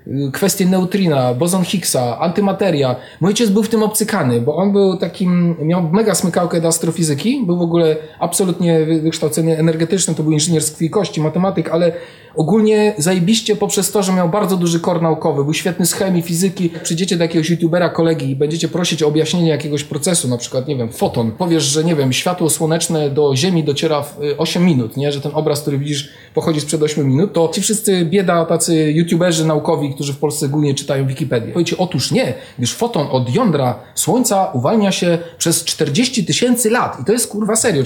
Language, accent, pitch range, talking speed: Polish, native, 150-190 Hz, 190 wpm